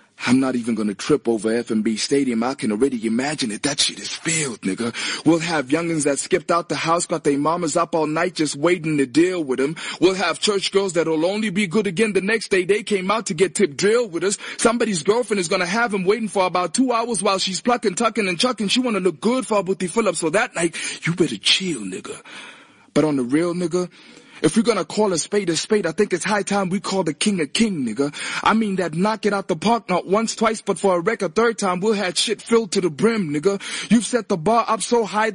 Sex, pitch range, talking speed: male, 165-220 Hz, 255 wpm